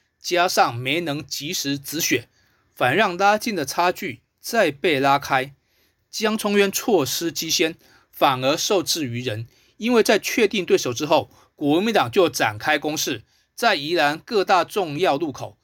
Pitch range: 145-215 Hz